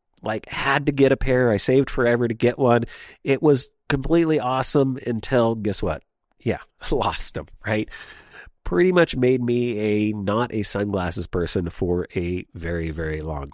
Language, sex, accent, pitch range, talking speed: English, male, American, 95-120 Hz, 165 wpm